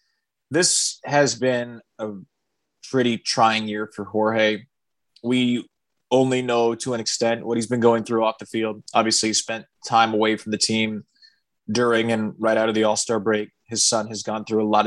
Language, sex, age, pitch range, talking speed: English, male, 20-39, 110-140 Hz, 185 wpm